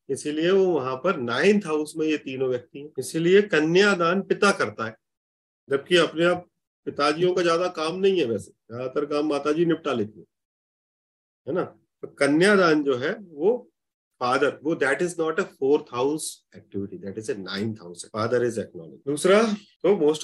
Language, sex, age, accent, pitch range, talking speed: Hindi, male, 30-49, native, 110-165 Hz, 130 wpm